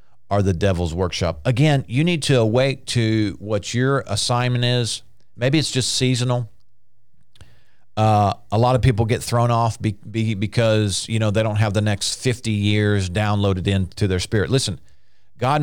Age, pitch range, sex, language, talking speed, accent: 40-59, 105-125 Hz, male, English, 160 wpm, American